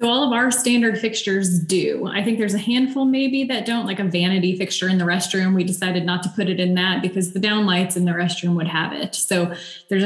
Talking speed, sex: 250 wpm, female